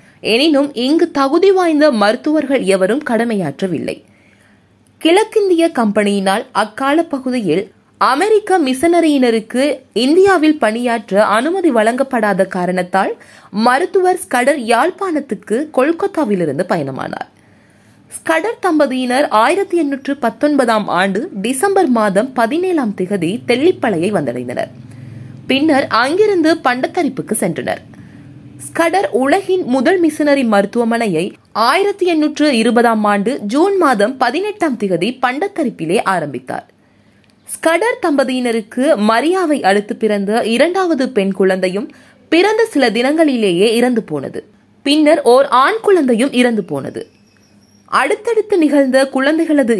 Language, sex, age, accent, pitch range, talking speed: Tamil, female, 20-39, native, 215-325 Hz, 80 wpm